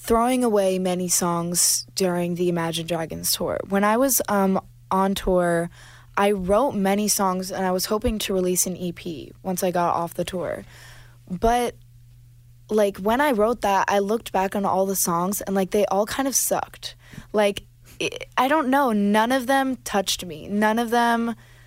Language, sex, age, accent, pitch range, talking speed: English, female, 20-39, American, 170-210 Hz, 180 wpm